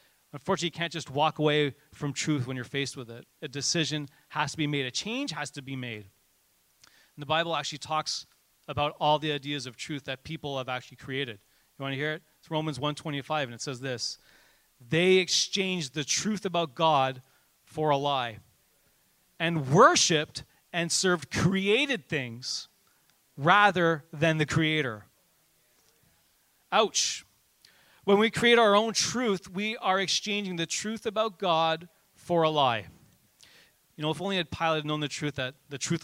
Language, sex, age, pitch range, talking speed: English, male, 30-49, 145-185 Hz, 170 wpm